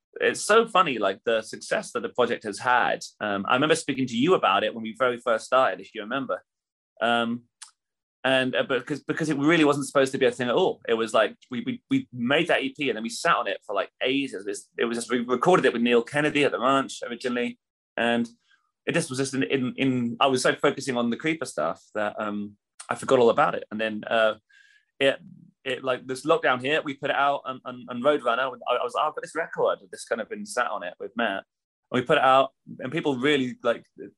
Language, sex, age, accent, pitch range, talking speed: English, male, 30-49, British, 120-165 Hz, 250 wpm